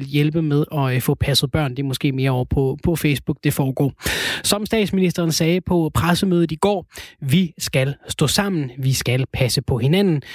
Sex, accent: male, native